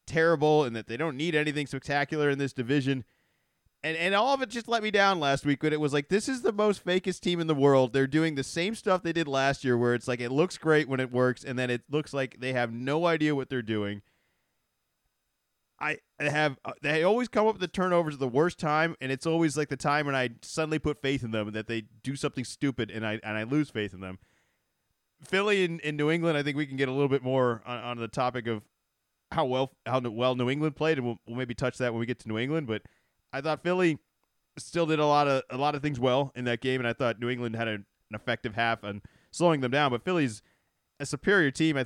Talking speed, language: 260 wpm, English